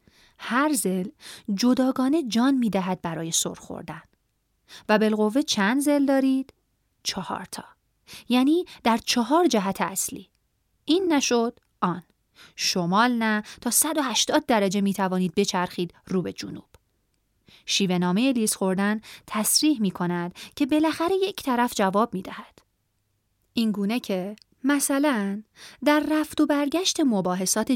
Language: Persian